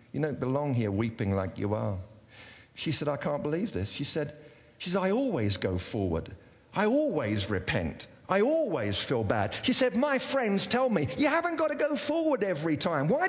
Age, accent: 50-69, British